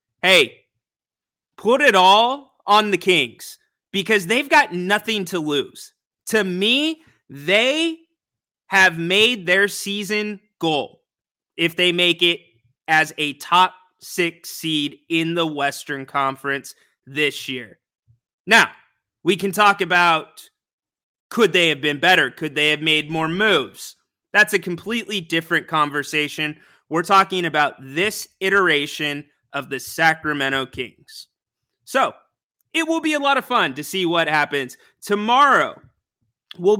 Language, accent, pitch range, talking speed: English, American, 150-205 Hz, 130 wpm